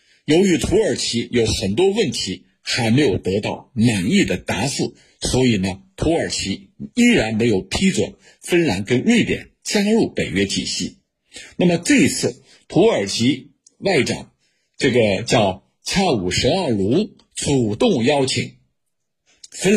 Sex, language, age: male, Chinese, 50-69